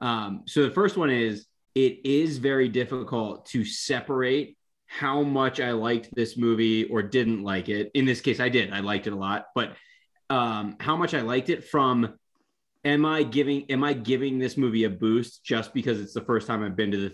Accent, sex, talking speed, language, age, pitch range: American, male, 210 wpm, English, 20-39, 110-140 Hz